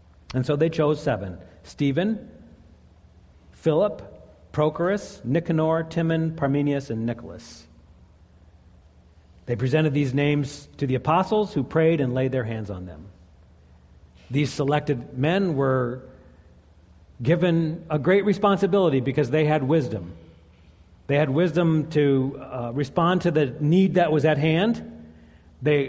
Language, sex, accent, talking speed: English, male, American, 125 wpm